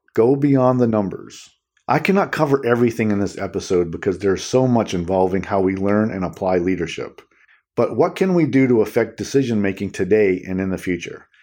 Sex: male